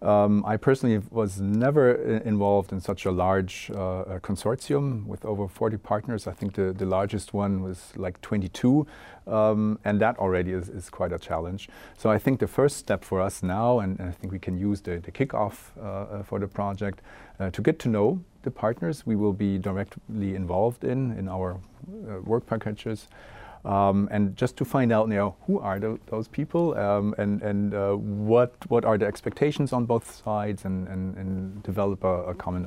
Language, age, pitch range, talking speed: English, 40-59, 95-110 Hz, 195 wpm